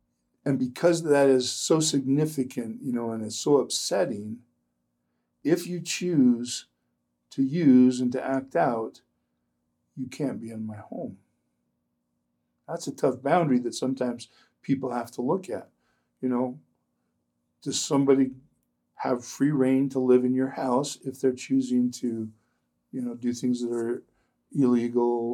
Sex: male